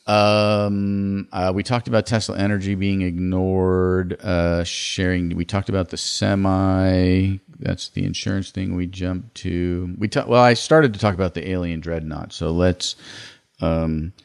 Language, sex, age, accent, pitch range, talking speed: English, male, 40-59, American, 90-115 Hz, 155 wpm